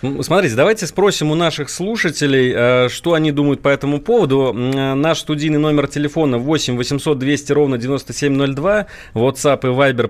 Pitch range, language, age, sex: 120-155 Hz, Russian, 30-49, male